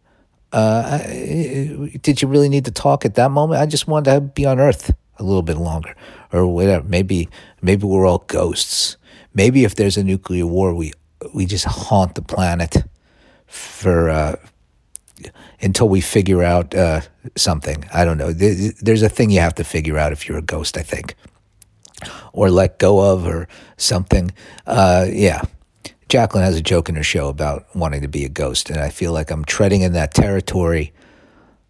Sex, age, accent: male, 50-69, American